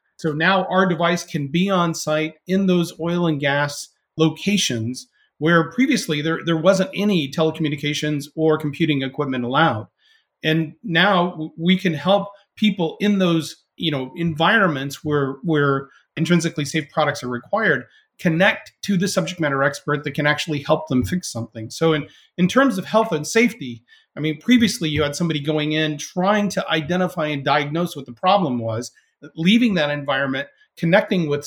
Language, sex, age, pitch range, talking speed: English, male, 40-59, 145-185 Hz, 165 wpm